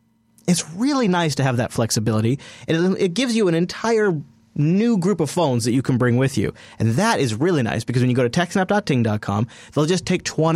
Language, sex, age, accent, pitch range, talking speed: English, male, 30-49, American, 115-150 Hz, 210 wpm